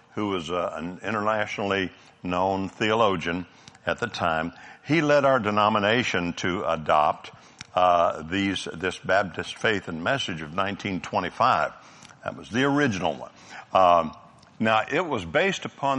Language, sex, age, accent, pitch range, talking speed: English, male, 60-79, American, 95-115 Hz, 130 wpm